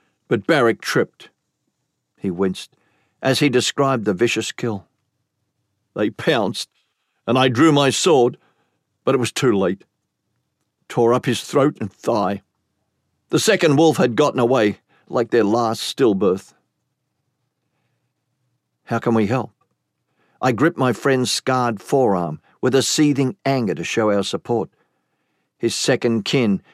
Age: 50-69